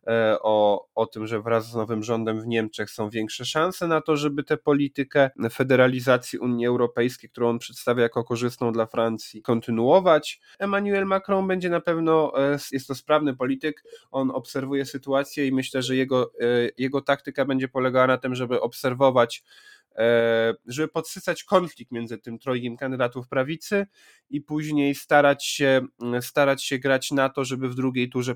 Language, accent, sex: Polish, native, male